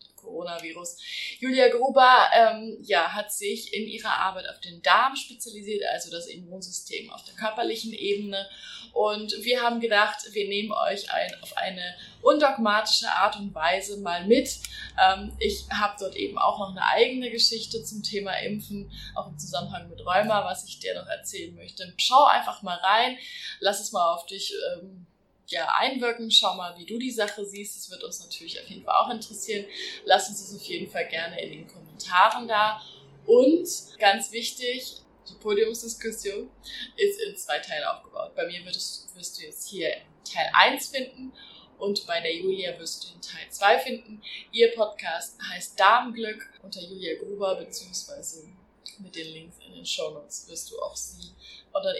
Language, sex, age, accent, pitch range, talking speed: German, female, 20-39, German, 185-240 Hz, 170 wpm